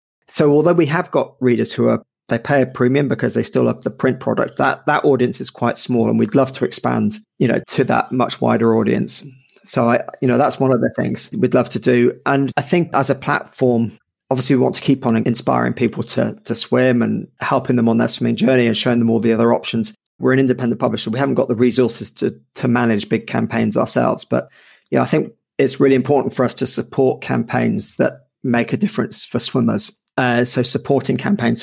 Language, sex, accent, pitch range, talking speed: English, male, British, 115-140 Hz, 225 wpm